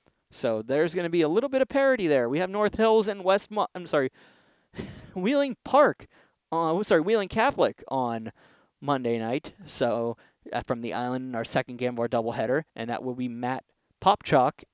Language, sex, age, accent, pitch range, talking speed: English, male, 20-39, American, 130-180 Hz, 185 wpm